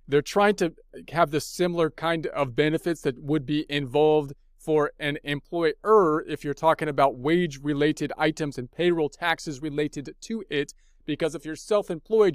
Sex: male